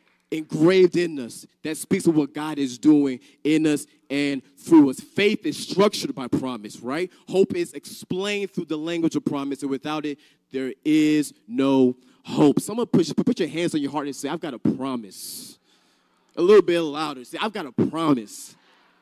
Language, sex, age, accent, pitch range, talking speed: English, male, 20-39, American, 140-185 Hz, 185 wpm